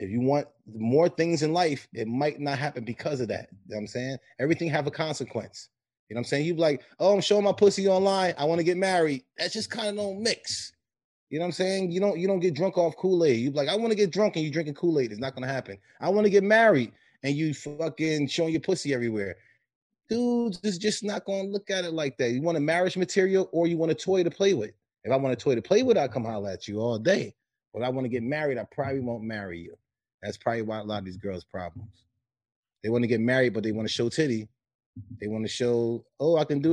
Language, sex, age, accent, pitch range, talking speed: English, male, 30-49, American, 120-170 Hz, 275 wpm